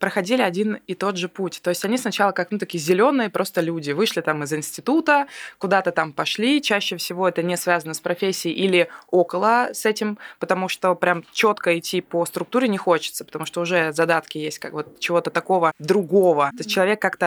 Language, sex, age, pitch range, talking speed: Russian, female, 20-39, 170-205 Hz, 200 wpm